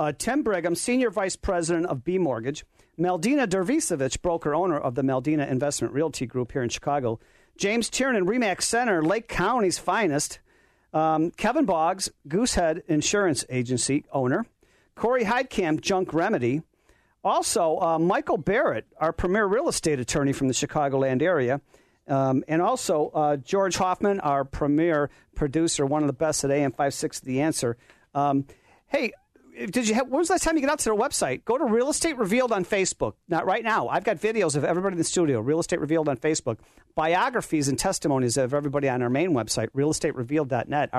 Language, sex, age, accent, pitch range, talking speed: English, male, 50-69, American, 140-195 Hz, 175 wpm